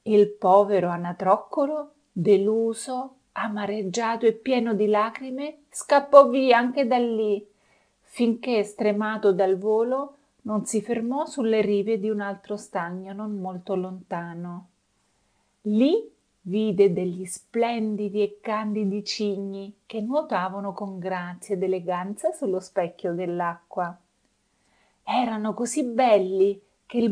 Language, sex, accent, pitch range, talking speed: Italian, female, native, 190-245 Hz, 115 wpm